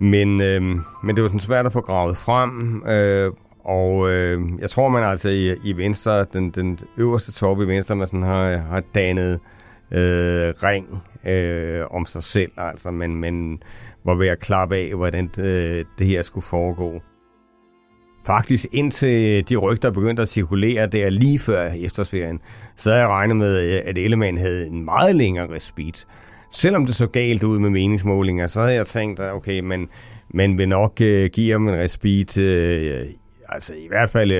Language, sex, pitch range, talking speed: Danish, male, 90-110 Hz, 175 wpm